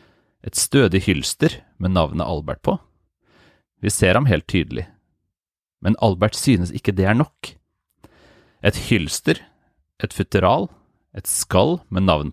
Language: English